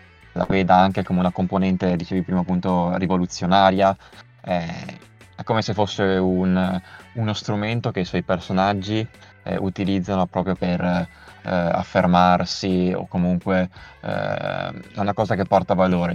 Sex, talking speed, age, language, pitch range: male, 135 wpm, 20-39, Italian, 90-100 Hz